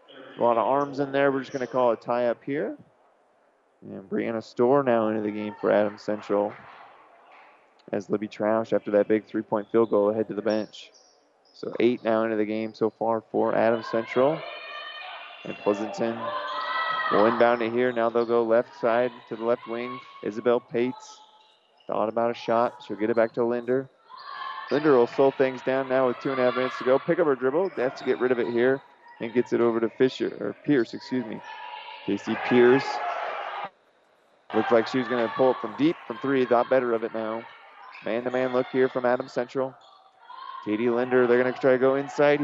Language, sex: English, male